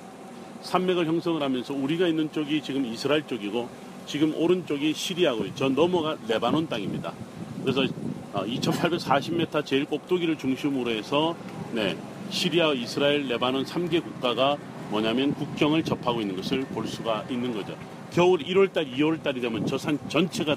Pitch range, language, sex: 135-175 Hz, Korean, male